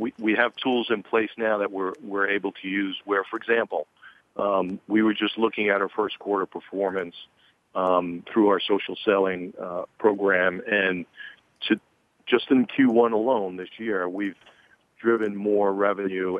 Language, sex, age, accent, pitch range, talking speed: English, male, 50-69, American, 90-105 Hz, 155 wpm